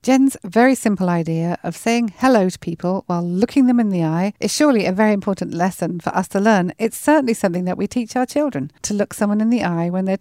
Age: 40-59